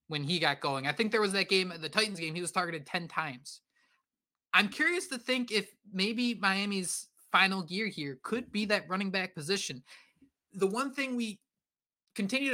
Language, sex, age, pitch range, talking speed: English, male, 20-39, 155-210 Hz, 190 wpm